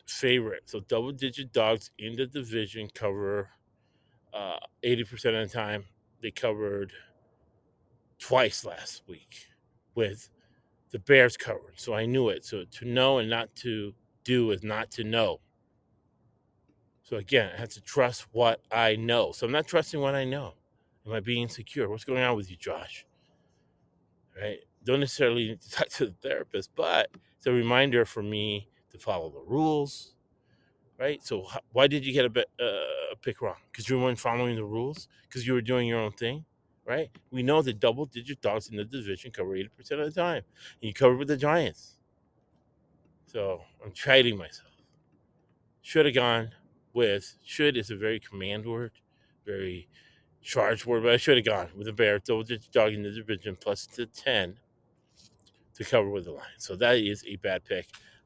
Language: English